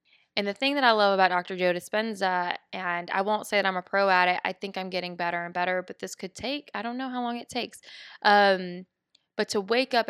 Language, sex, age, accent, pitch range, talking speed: English, female, 20-39, American, 180-205 Hz, 255 wpm